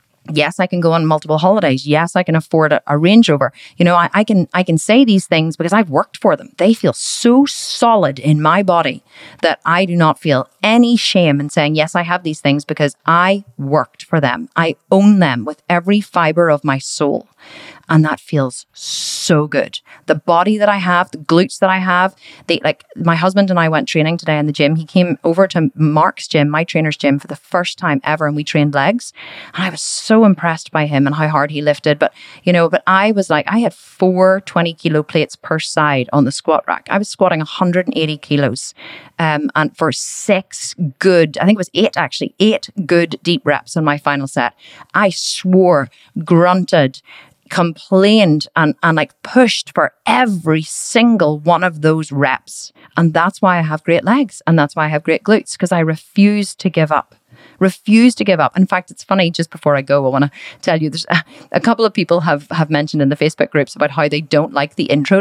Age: 30-49